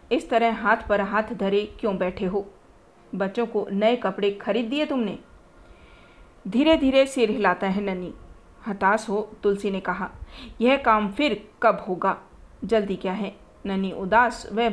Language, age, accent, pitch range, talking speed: Hindi, 40-59, native, 195-240 Hz, 155 wpm